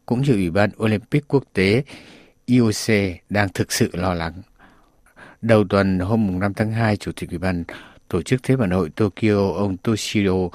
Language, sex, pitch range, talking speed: Vietnamese, male, 90-120 Hz, 180 wpm